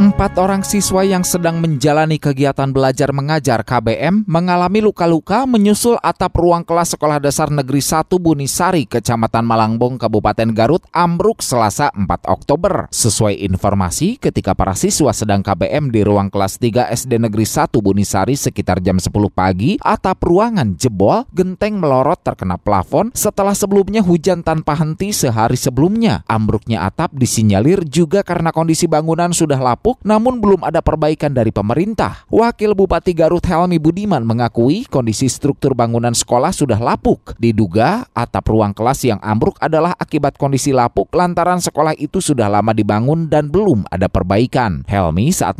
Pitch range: 110-175 Hz